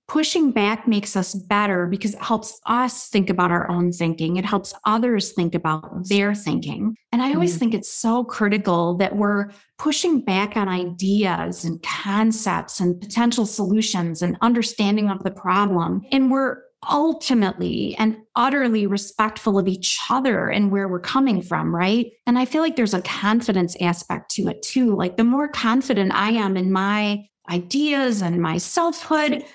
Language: English